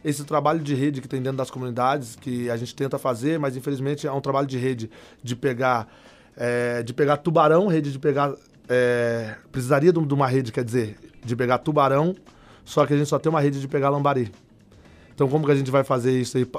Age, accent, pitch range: 20-39, Brazilian, 125-150 Hz